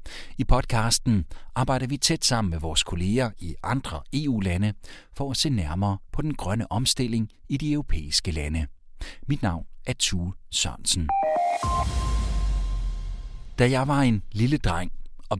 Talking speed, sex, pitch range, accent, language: 140 wpm, male, 85-120 Hz, native, Danish